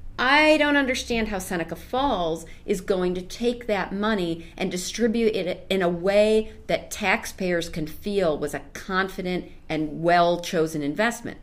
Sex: female